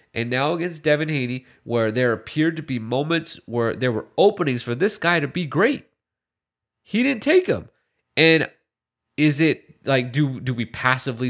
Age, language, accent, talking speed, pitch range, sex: 30-49, English, American, 175 wpm, 115-175 Hz, male